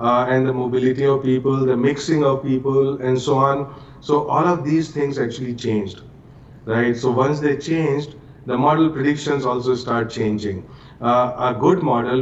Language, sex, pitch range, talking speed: English, male, 115-140 Hz, 170 wpm